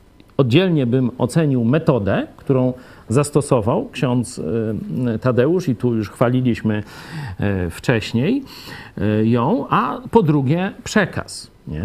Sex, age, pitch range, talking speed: male, 50-69, 115-160 Hz, 90 wpm